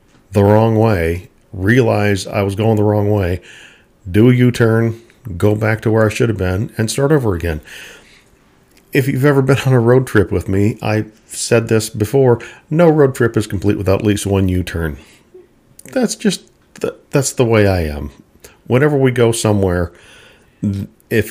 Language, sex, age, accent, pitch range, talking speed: English, male, 50-69, American, 95-115 Hz, 170 wpm